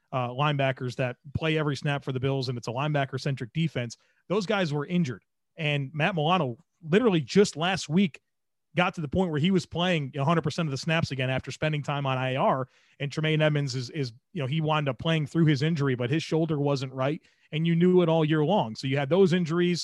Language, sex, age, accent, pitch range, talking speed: English, male, 30-49, American, 145-185 Hz, 230 wpm